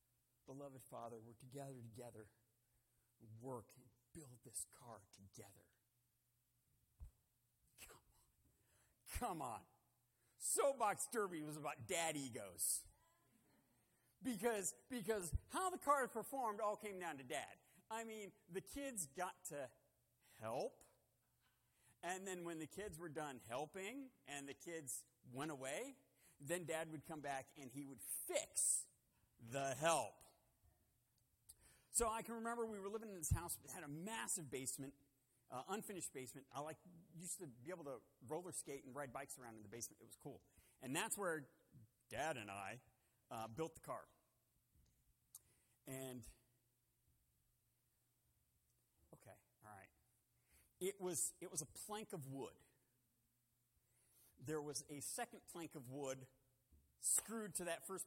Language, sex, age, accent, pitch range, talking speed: English, male, 50-69, American, 120-170 Hz, 135 wpm